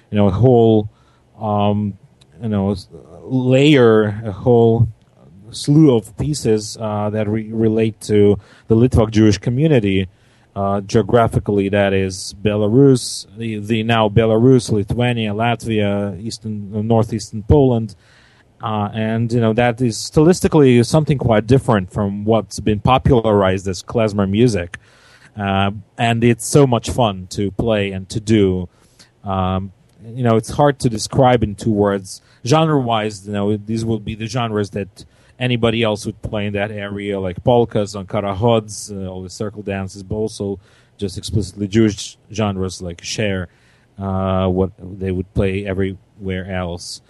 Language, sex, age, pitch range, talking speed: English, male, 30-49, 100-120 Hz, 145 wpm